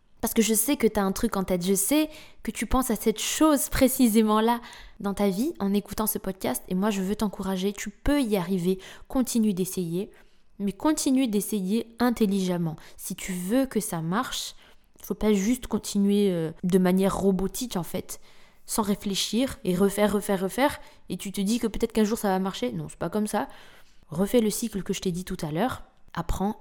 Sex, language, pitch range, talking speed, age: female, French, 195-240 Hz, 210 wpm, 20-39